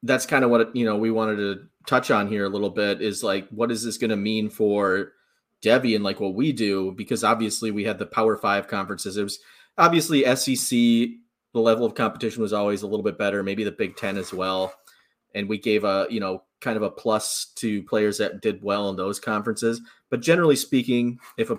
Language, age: English, 30-49